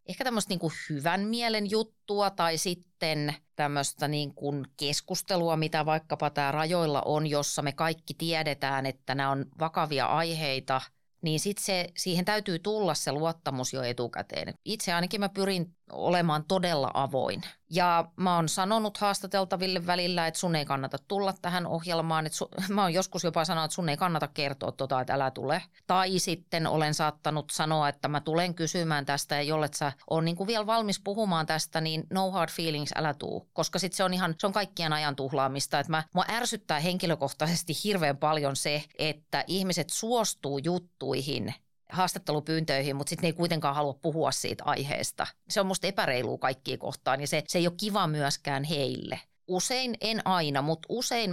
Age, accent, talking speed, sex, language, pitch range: 30-49, native, 170 wpm, female, Finnish, 145-185 Hz